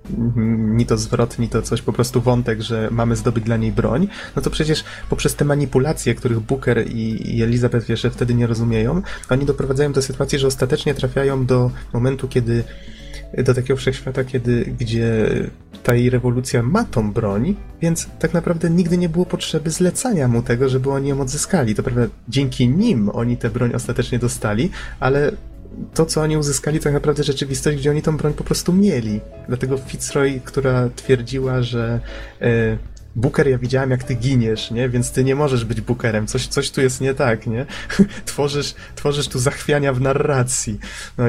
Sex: male